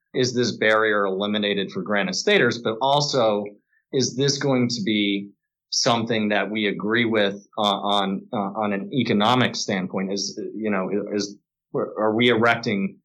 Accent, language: American, English